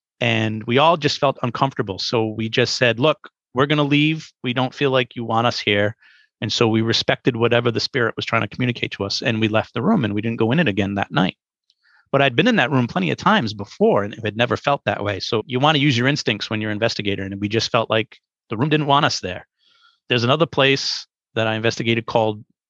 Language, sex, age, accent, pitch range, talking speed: English, male, 30-49, American, 110-135 Hz, 255 wpm